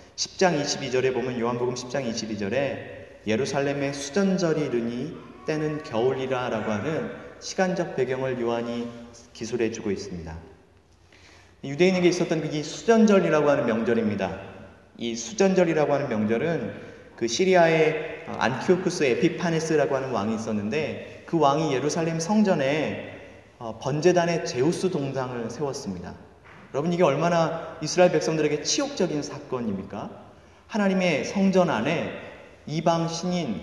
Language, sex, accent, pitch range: Korean, male, native, 120-170 Hz